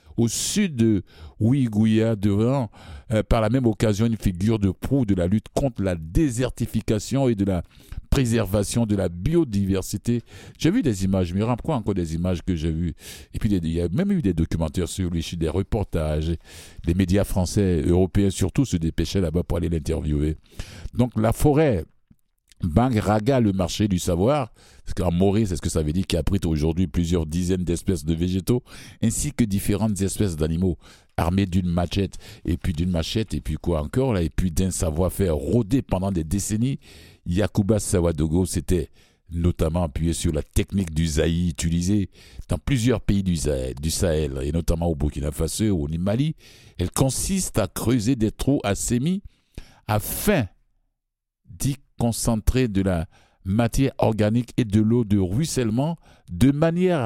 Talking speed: 170 wpm